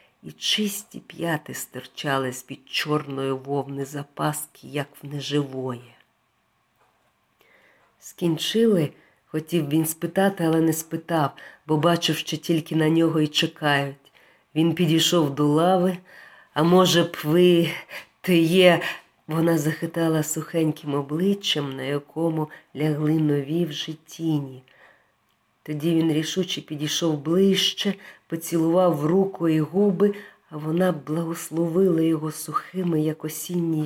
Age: 40-59